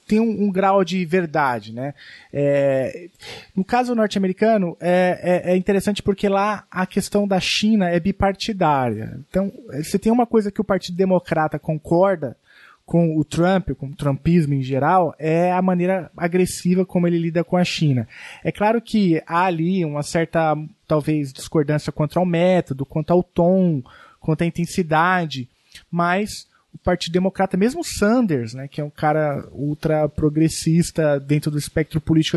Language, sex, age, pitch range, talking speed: Portuguese, male, 20-39, 150-185 Hz, 160 wpm